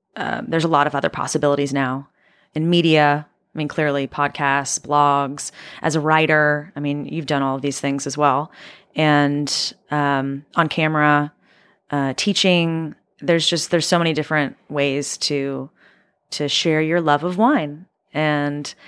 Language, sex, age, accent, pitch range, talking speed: English, female, 30-49, American, 145-175 Hz, 155 wpm